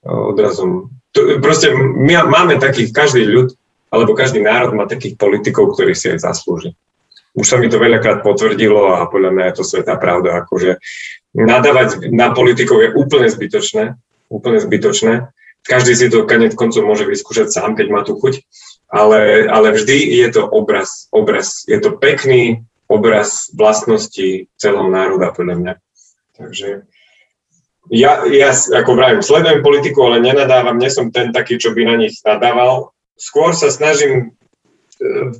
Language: Slovak